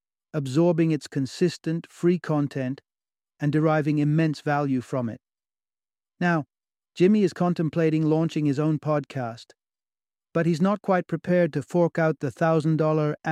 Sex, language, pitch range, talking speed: male, English, 140-165 Hz, 130 wpm